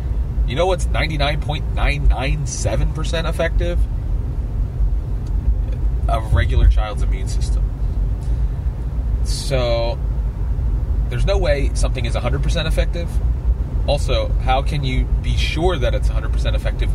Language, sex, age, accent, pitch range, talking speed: English, male, 30-49, American, 65-90 Hz, 130 wpm